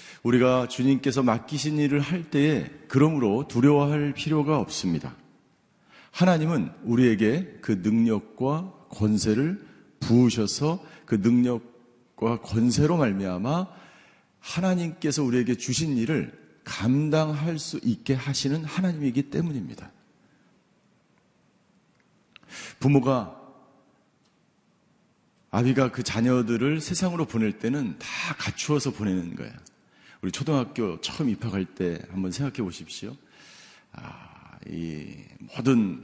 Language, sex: Korean, male